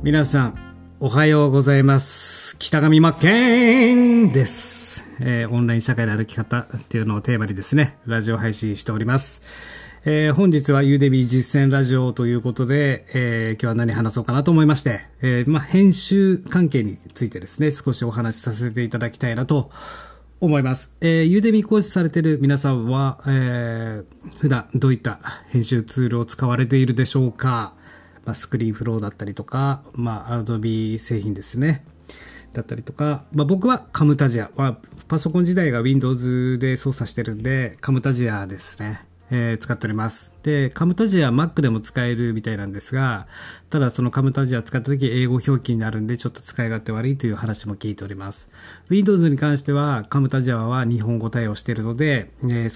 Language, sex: Japanese, male